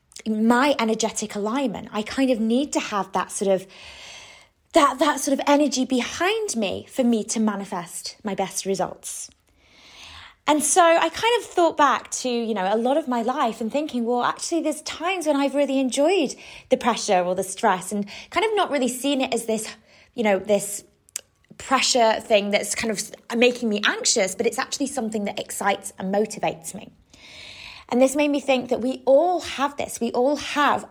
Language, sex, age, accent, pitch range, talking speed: English, female, 20-39, British, 215-280 Hz, 185 wpm